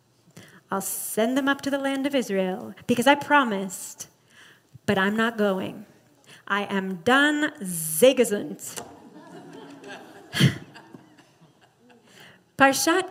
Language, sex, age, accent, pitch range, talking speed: English, female, 30-49, American, 215-270 Hz, 95 wpm